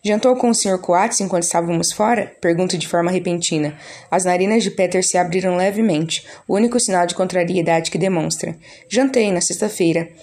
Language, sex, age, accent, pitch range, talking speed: Portuguese, female, 10-29, Brazilian, 175-200 Hz, 170 wpm